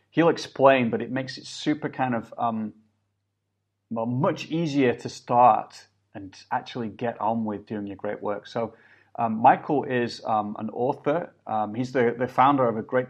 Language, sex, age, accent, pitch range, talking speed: English, male, 30-49, British, 105-125 Hz, 180 wpm